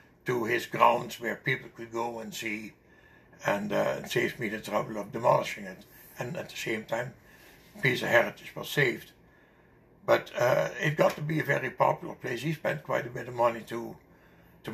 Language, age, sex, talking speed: English, 60-79, male, 185 wpm